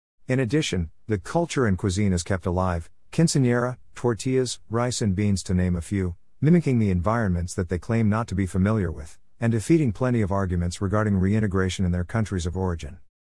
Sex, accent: male, American